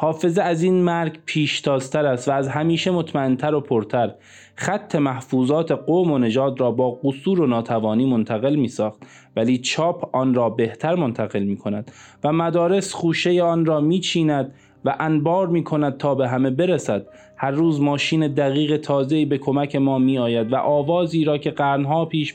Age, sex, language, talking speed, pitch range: 20-39, male, Persian, 165 wpm, 120-155 Hz